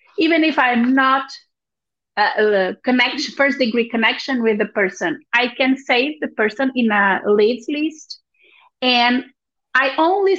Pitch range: 220-280 Hz